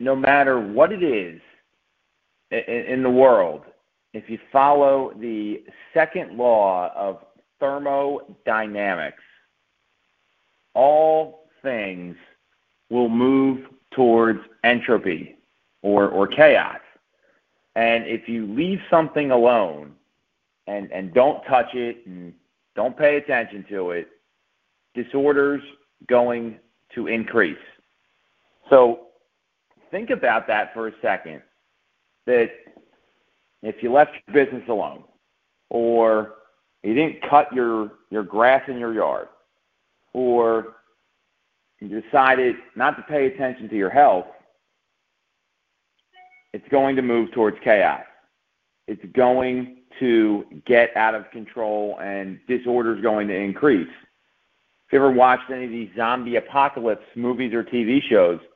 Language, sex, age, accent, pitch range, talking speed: English, male, 40-59, American, 110-135 Hz, 115 wpm